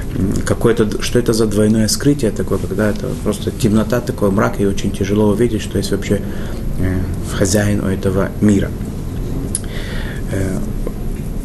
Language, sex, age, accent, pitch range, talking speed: Russian, male, 30-49, native, 100-115 Hz, 135 wpm